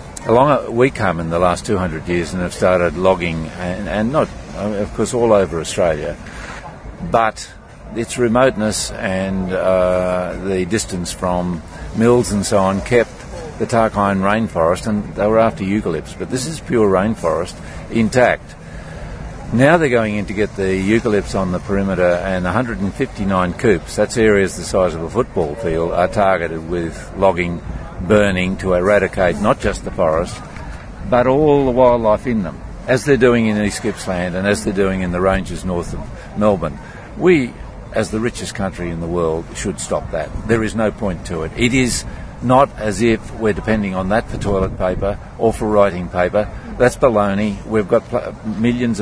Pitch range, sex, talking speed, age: 90-110 Hz, male, 175 wpm, 50-69